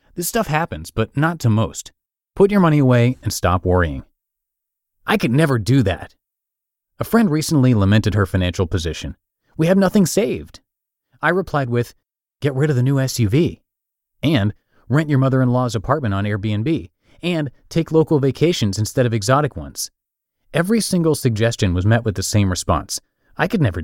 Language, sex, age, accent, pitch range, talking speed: English, male, 30-49, American, 100-150 Hz, 165 wpm